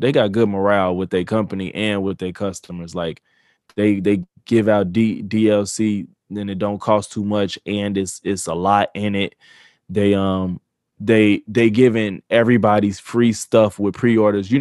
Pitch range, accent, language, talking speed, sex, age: 100-110 Hz, American, English, 175 wpm, male, 20-39